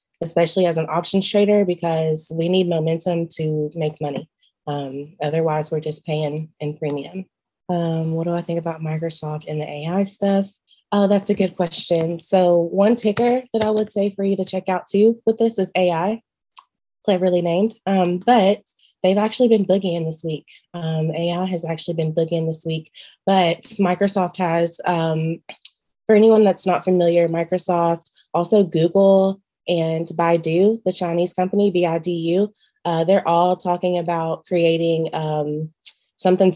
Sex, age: female, 20-39